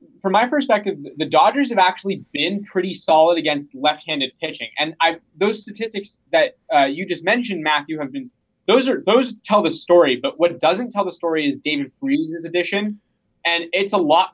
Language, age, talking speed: English, 20-39, 190 wpm